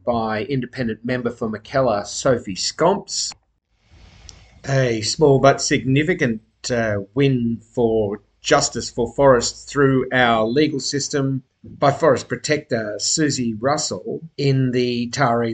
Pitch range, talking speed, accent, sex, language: 115-135 Hz, 110 wpm, Australian, male, English